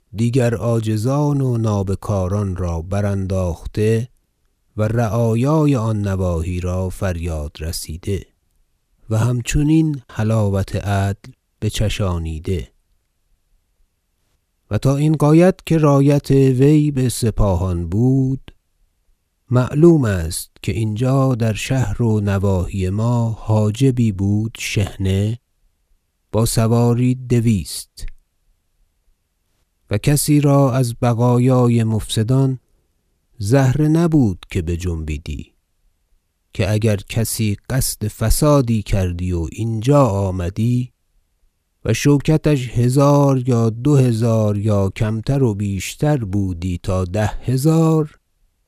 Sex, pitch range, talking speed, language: male, 90-125 Hz, 95 wpm, Persian